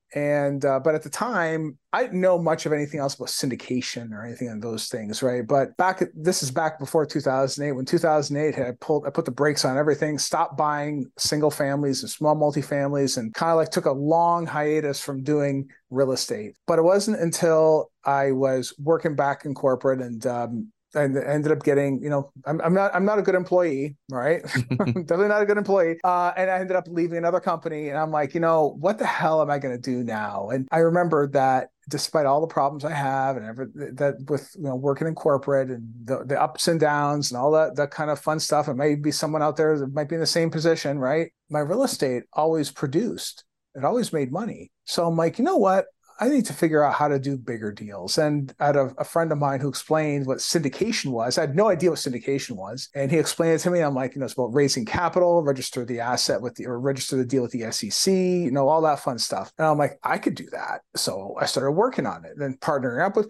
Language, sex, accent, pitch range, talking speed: English, male, American, 135-165 Hz, 240 wpm